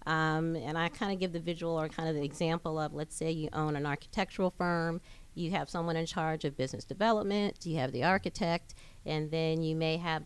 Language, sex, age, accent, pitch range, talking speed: English, female, 40-59, American, 150-185 Hz, 220 wpm